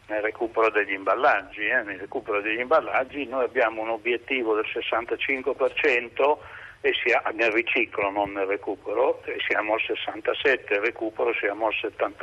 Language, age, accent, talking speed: Italian, 60-79, native, 145 wpm